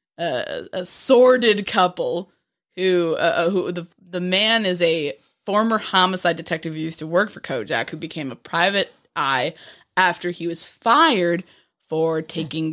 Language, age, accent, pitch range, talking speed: English, 20-39, American, 170-205 Hz, 150 wpm